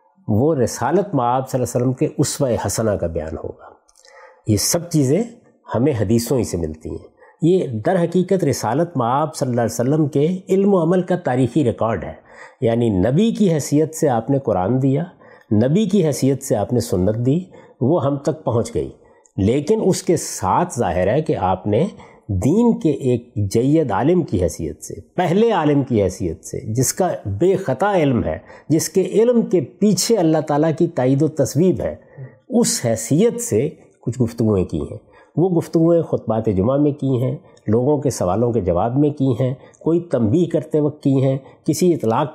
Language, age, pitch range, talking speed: Urdu, 50-69, 120-170 Hz, 185 wpm